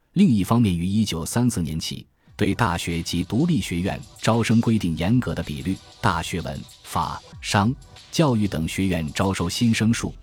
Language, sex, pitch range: Chinese, male, 85-115 Hz